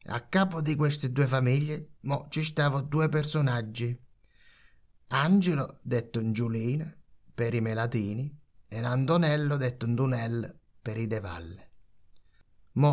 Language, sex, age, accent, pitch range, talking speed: Italian, male, 30-49, native, 105-135 Hz, 120 wpm